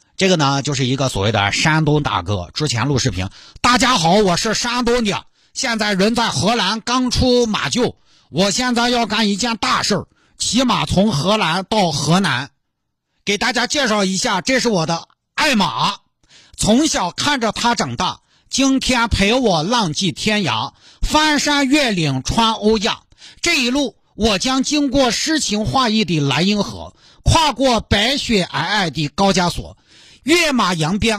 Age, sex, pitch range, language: 50-69, male, 180-260 Hz, Chinese